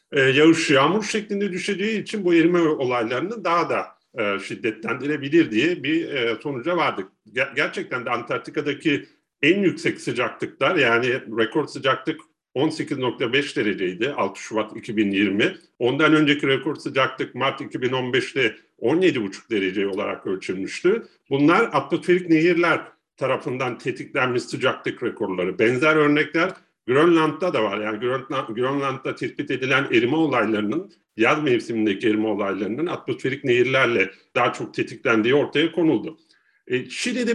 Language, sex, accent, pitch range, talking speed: Turkish, male, native, 140-185 Hz, 110 wpm